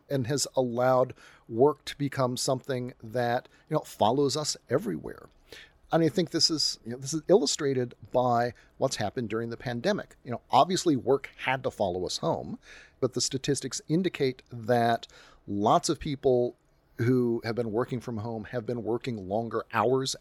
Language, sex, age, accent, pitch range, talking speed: English, male, 40-59, American, 110-135 Hz, 170 wpm